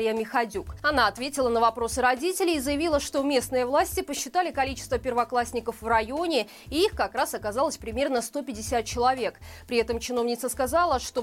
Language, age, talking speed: Russian, 20-39, 155 wpm